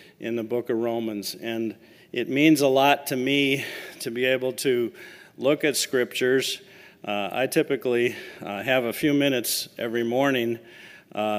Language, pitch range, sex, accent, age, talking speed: English, 115-130 Hz, male, American, 50-69, 160 wpm